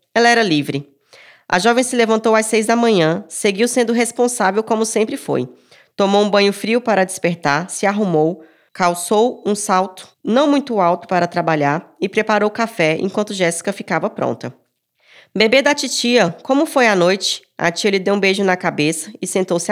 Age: 20-39